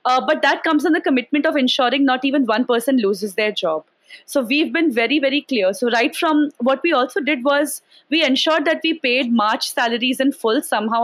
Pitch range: 235-295 Hz